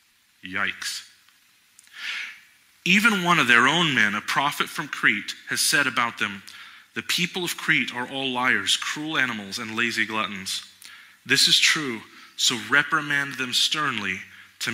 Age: 20-39